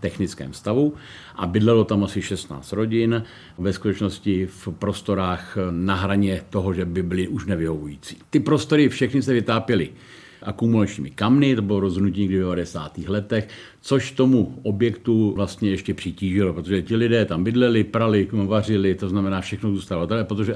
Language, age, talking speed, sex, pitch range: Czech, 50-69, 150 wpm, male, 95-115 Hz